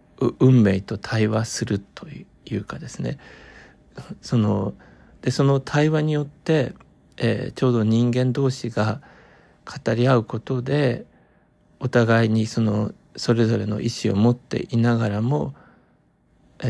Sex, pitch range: male, 105-130 Hz